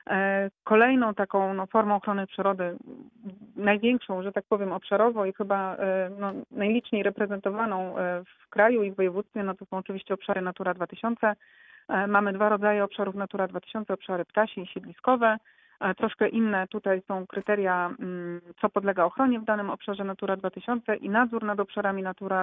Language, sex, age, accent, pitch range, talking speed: Polish, female, 30-49, native, 190-215 Hz, 150 wpm